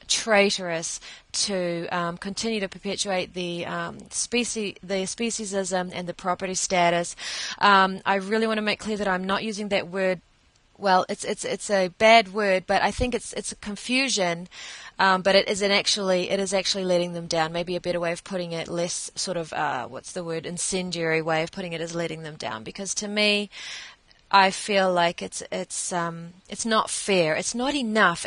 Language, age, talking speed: English, 30-49, 190 wpm